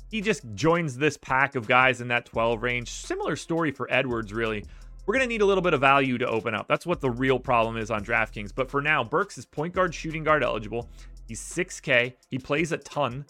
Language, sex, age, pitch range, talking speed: English, male, 30-49, 130-165 Hz, 230 wpm